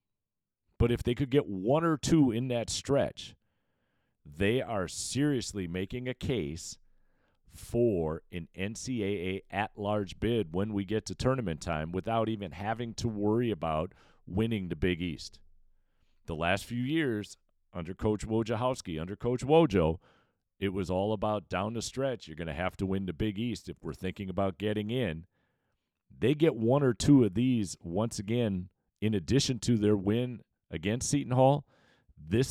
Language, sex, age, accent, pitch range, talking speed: English, male, 40-59, American, 85-115 Hz, 160 wpm